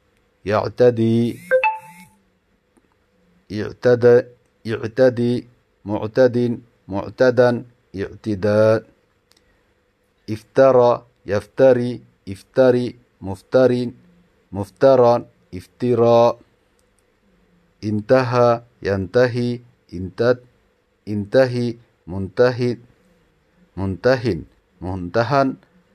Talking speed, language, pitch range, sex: 35 wpm, Bengali, 100-125 Hz, male